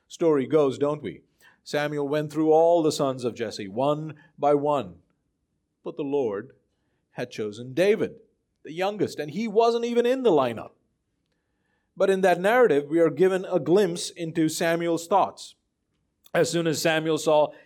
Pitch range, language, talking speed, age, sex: 120-195 Hz, English, 160 wpm, 40-59, male